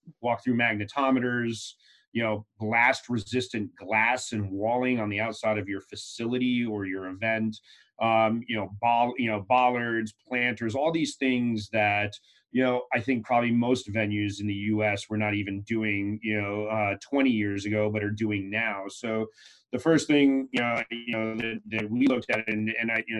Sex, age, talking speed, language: male, 30-49, 185 wpm, English